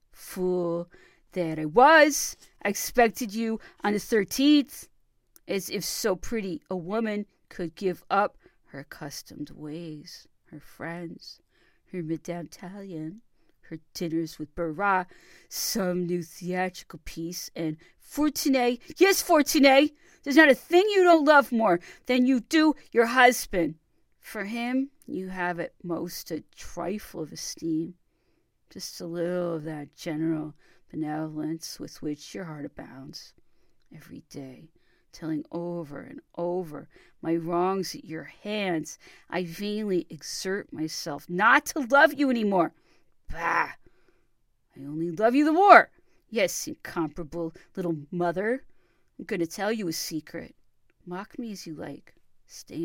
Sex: female